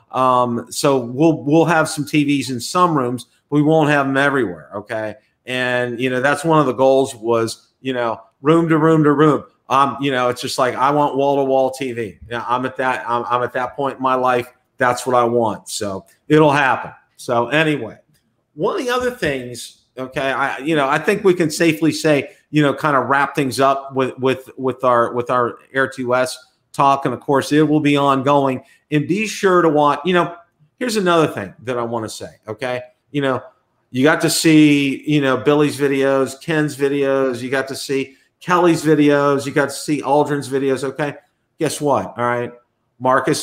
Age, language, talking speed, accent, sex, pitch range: 40-59, English, 210 wpm, American, male, 125-150 Hz